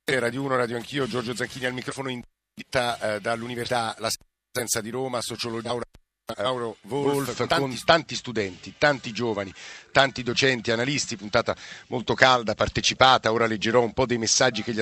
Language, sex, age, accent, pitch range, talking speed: Italian, male, 50-69, native, 110-130 Hz, 150 wpm